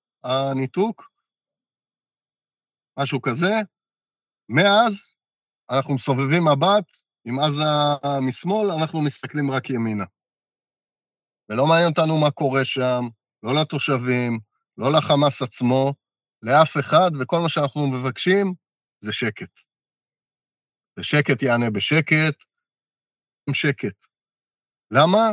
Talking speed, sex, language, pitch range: 90 wpm, male, Hebrew, 135-175 Hz